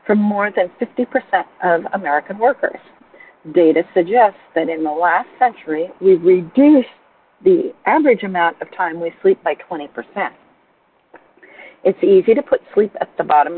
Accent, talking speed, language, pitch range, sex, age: American, 145 wpm, English, 175-245 Hz, female, 50-69